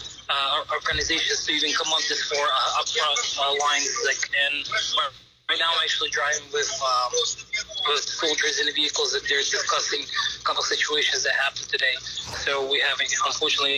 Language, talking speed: English, 185 wpm